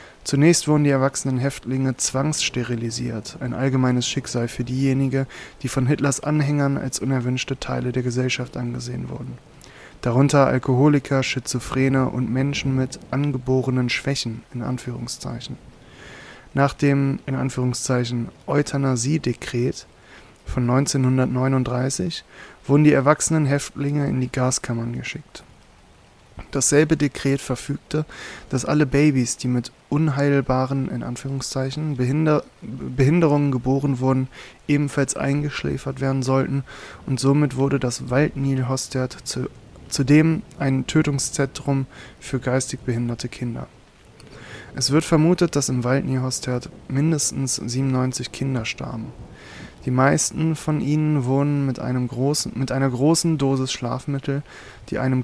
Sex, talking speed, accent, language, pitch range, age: male, 110 wpm, German, German, 125-140 Hz, 20-39